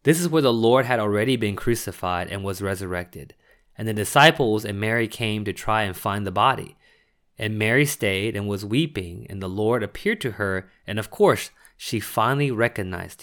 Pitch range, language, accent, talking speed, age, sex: 105-145 Hz, English, American, 190 wpm, 20-39, male